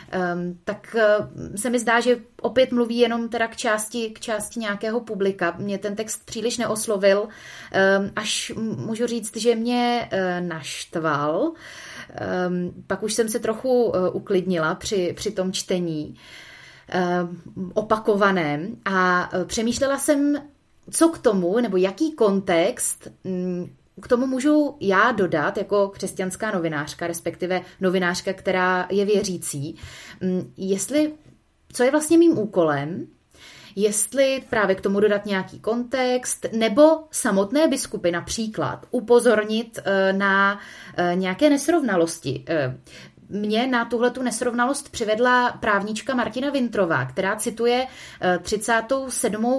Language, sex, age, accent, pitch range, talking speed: Czech, female, 30-49, native, 180-240 Hz, 110 wpm